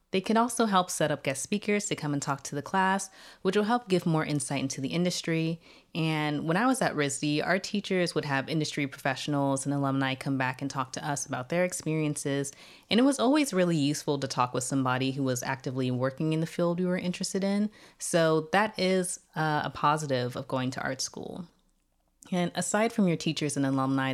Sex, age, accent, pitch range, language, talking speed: female, 20-39, American, 135-175 Hz, English, 215 wpm